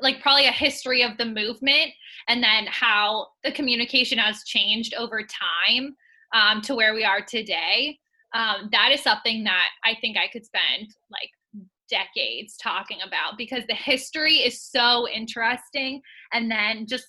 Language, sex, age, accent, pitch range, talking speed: English, female, 20-39, American, 215-265 Hz, 160 wpm